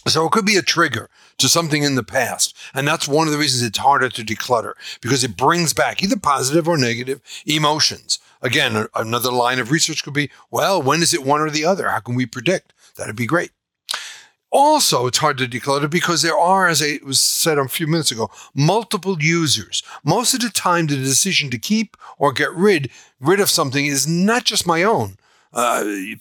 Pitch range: 130-180 Hz